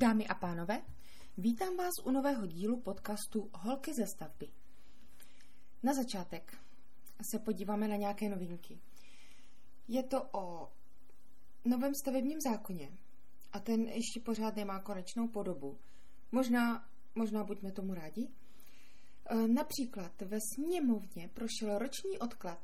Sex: female